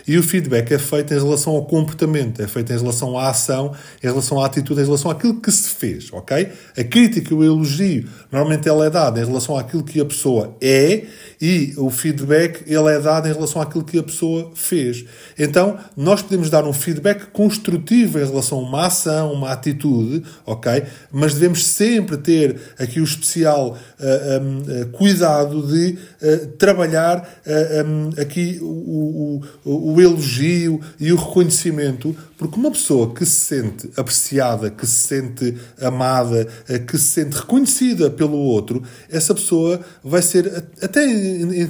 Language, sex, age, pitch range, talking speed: Portuguese, male, 20-39, 140-175 Hz, 170 wpm